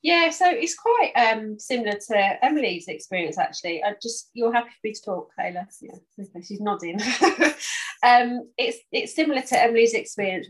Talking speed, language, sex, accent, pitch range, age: 165 wpm, English, female, British, 180-225 Hz, 30-49